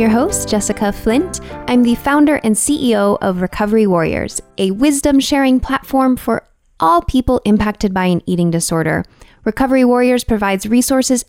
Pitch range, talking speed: 180-260 Hz, 145 wpm